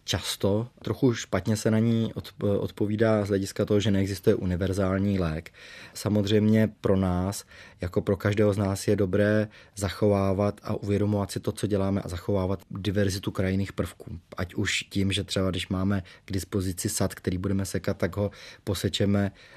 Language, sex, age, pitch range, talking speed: Czech, male, 20-39, 95-105 Hz, 160 wpm